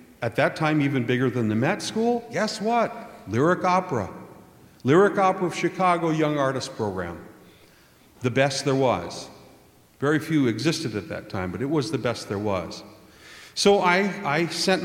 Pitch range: 115-160 Hz